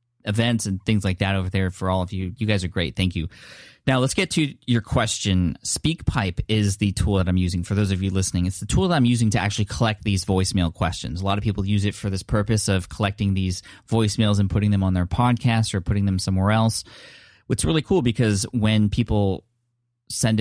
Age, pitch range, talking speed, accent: 20-39, 95-110 Hz, 230 wpm, American